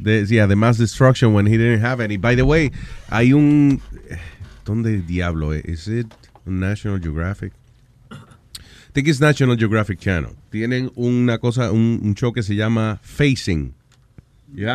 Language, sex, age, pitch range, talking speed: Spanish, male, 30-49, 110-135 Hz, 165 wpm